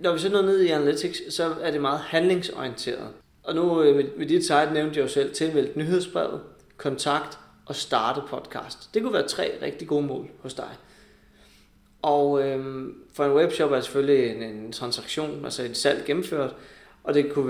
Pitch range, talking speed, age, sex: 130-180 Hz, 175 wpm, 20-39, male